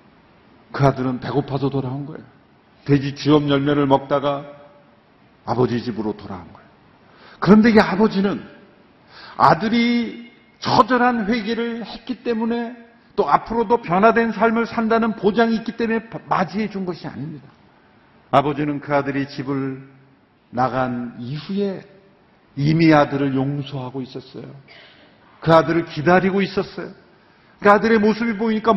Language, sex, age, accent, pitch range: Korean, male, 50-69, native, 140-220 Hz